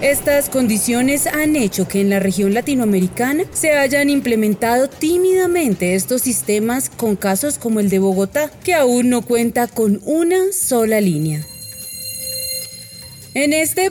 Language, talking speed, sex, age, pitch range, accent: Spanish, 135 wpm, female, 30-49, 185-270 Hz, Colombian